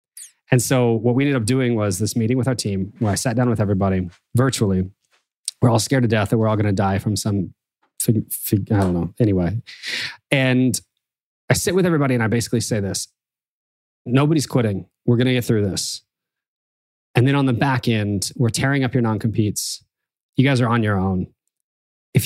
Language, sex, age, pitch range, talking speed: English, male, 20-39, 105-135 Hz, 195 wpm